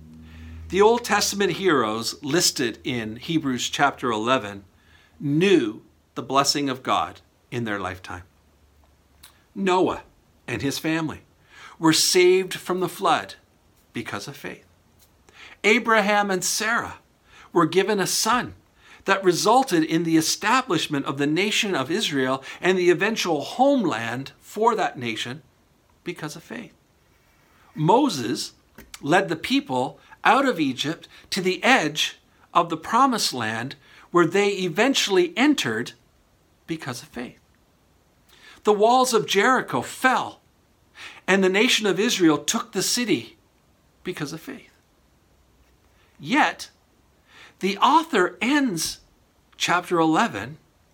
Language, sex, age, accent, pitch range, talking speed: English, male, 50-69, American, 130-210 Hz, 115 wpm